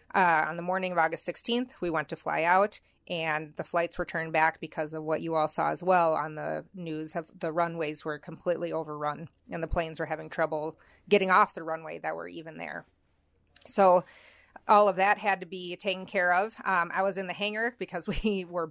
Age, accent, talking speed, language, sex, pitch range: 30-49, American, 215 wpm, English, female, 160-185 Hz